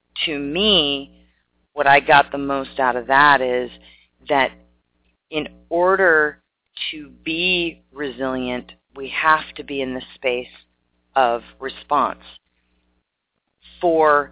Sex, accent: female, American